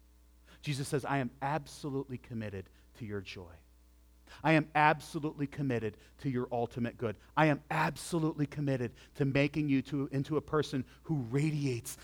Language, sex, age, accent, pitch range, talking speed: English, male, 40-59, American, 110-155 Hz, 145 wpm